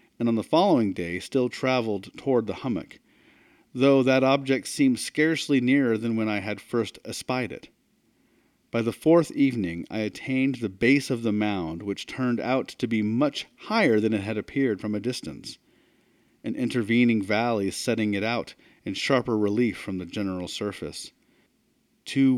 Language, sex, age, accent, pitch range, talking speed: English, male, 40-59, American, 100-130 Hz, 165 wpm